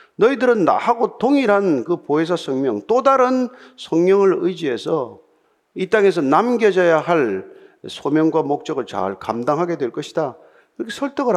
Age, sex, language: 50-69, male, Korean